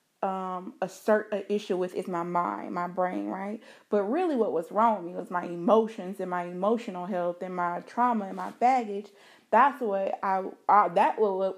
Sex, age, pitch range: female, 30-49, 205-260 Hz